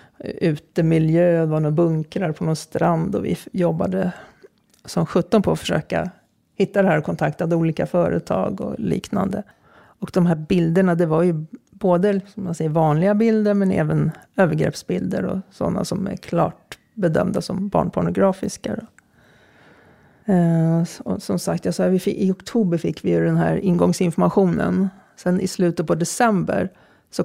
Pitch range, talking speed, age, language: 160-190 Hz, 145 wpm, 40-59, Swedish